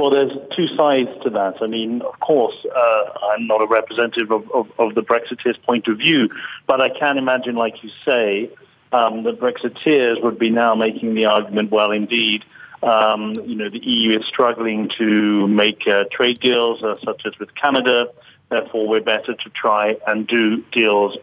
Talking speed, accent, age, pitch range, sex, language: 185 wpm, British, 50-69, 110-135 Hz, male, English